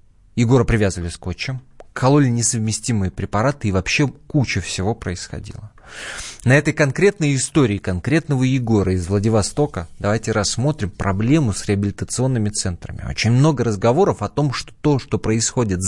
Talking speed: 130 wpm